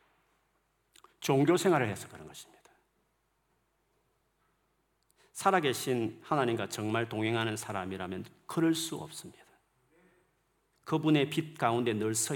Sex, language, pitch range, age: male, Korean, 110-150 Hz, 40-59